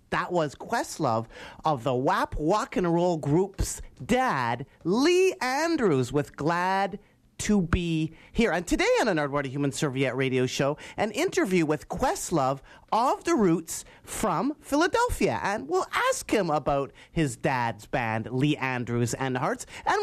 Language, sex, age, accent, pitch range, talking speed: English, male, 30-49, American, 135-200 Hz, 150 wpm